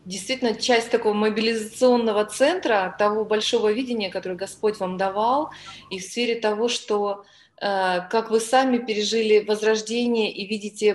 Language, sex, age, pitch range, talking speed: Russian, female, 20-39, 210-250 Hz, 130 wpm